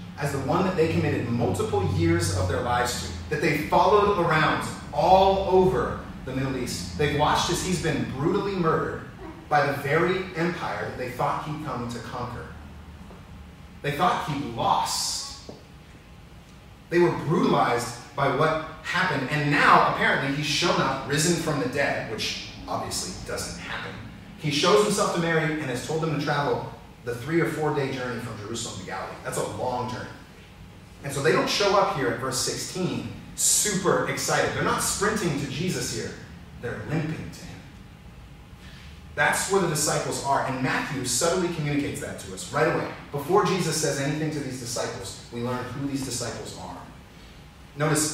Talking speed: 170 wpm